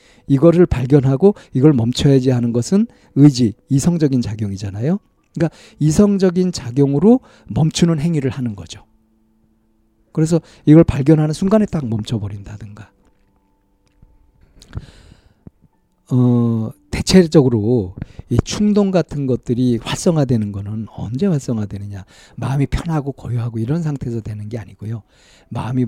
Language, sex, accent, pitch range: Korean, male, native, 110-155 Hz